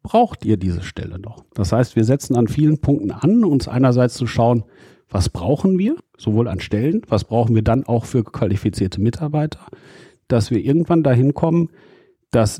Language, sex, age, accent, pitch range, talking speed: German, male, 50-69, German, 105-135 Hz, 175 wpm